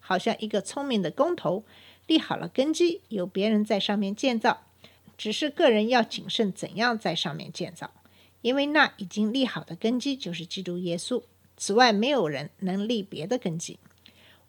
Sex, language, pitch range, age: female, Chinese, 195-260 Hz, 50-69